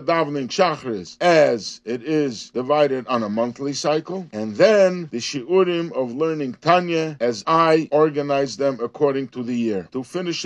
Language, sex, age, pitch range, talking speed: English, male, 50-69, 135-175 Hz, 145 wpm